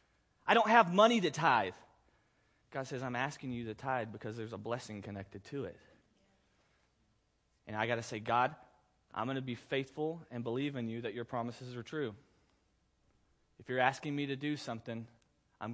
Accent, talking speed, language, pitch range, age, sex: American, 185 wpm, English, 120-155 Hz, 30-49, male